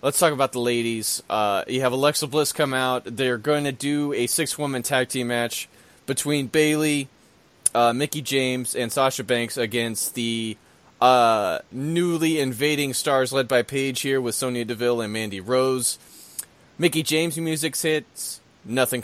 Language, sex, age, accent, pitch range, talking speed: English, male, 20-39, American, 120-150 Hz, 160 wpm